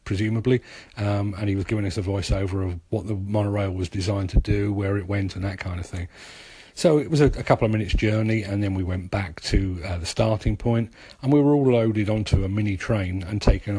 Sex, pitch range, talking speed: male, 100-115 Hz, 240 wpm